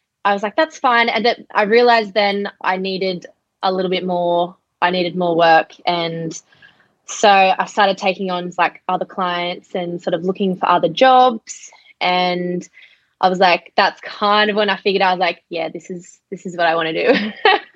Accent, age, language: Australian, 20-39, English